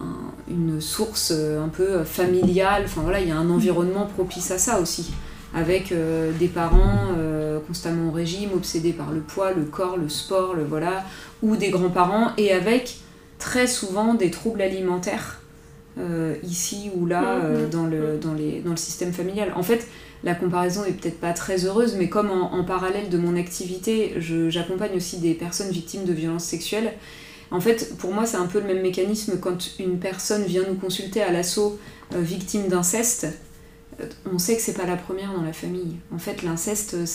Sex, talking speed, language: female, 185 wpm, French